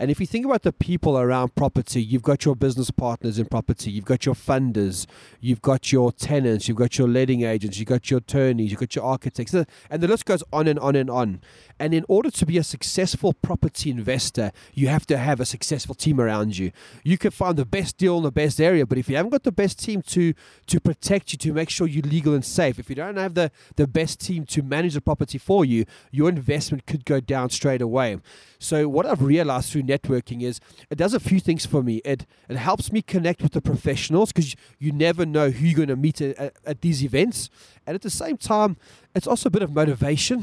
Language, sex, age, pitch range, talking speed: English, male, 30-49, 130-170 Hz, 235 wpm